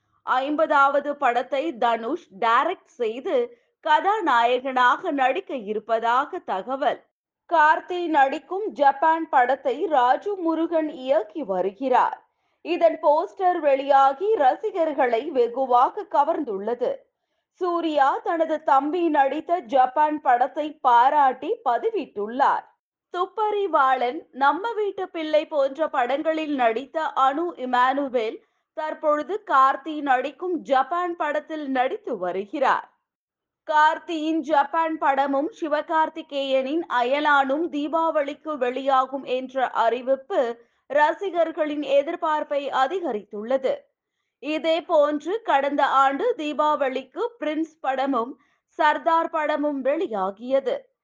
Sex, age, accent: female, 20-39, native